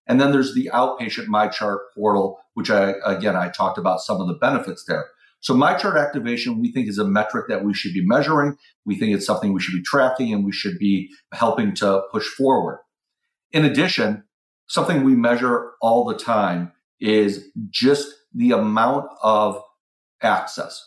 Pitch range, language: 105-150 Hz, English